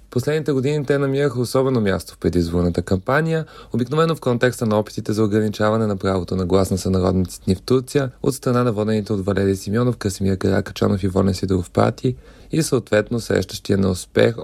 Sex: male